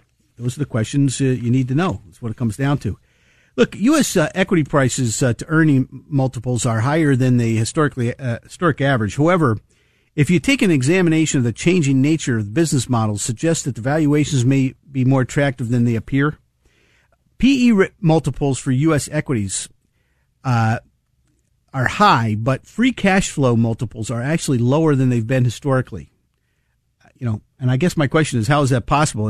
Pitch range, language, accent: 120-155 Hz, English, American